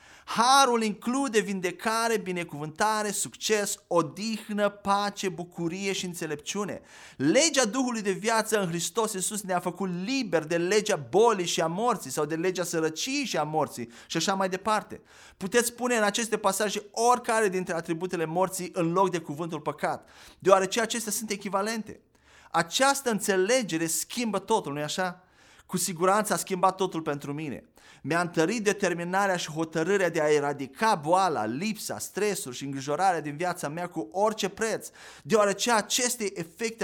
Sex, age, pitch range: male, 30-49, 170-215 Hz